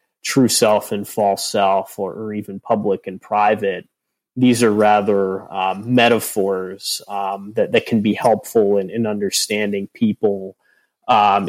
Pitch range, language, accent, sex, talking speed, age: 100-120 Hz, English, American, male, 140 wpm, 30-49